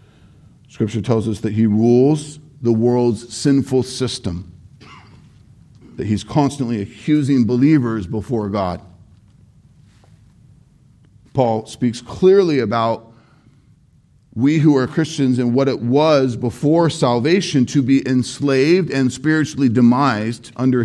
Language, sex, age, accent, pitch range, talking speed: English, male, 50-69, American, 115-150 Hz, 110 wpm